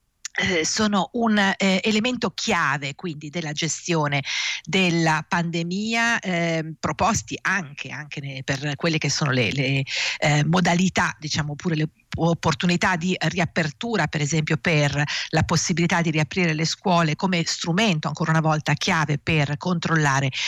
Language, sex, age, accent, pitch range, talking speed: Italian, female, 50-69, native, 145-190 Hz, 135 wpm